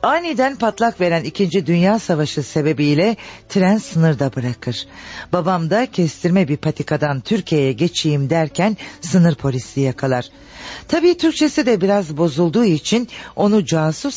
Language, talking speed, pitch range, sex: Turkish, 125 wpm, 130-185 Hz, female